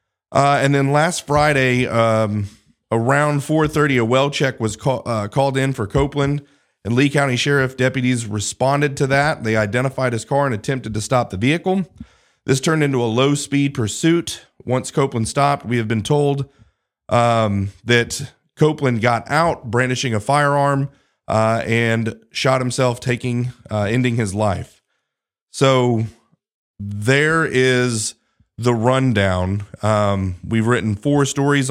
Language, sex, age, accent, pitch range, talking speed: English, male, 30-49, American, 115-140 Hz, 145 wpm